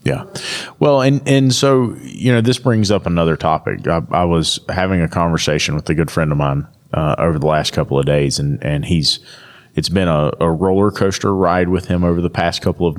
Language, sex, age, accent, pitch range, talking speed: English, male, 30-49, American, 85-125 Hz, 220 wpm